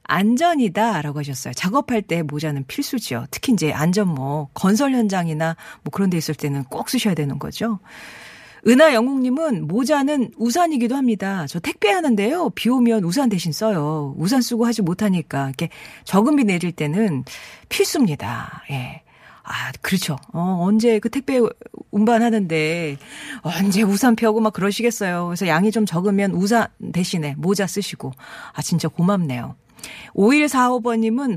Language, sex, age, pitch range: Korean, female, 40-59, 165-235 Hz